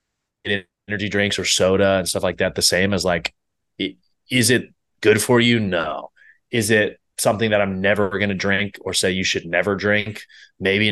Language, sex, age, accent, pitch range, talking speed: English, male, 30-49, American, 95-110 Hz, 185 wpm